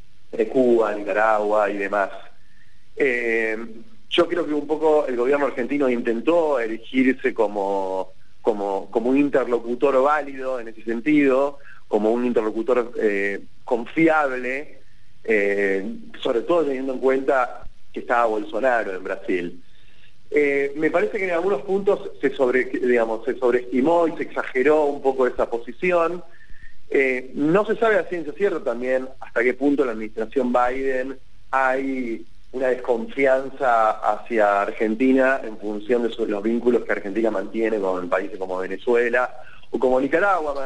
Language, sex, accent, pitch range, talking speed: Spanish, male, Argentinian, 110-135 Hz, 140 wpm